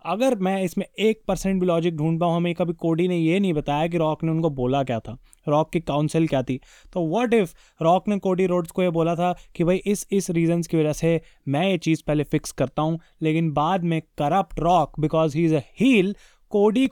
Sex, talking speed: male, 230 wpm